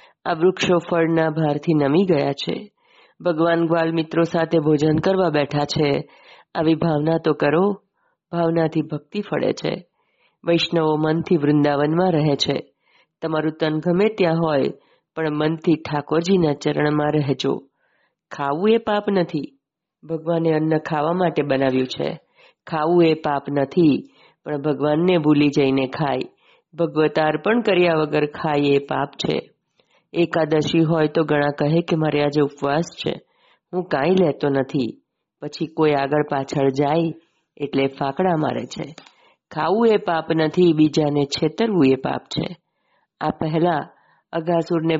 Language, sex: Gujarati, female